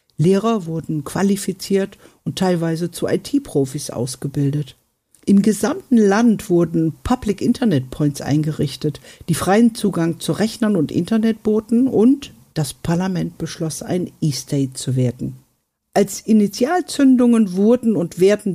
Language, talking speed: German, 115 wpm